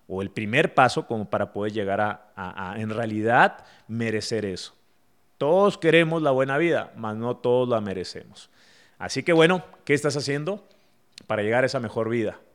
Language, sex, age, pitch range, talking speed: Spanish, male, 30-49, 115-155 Hz, 175 wpm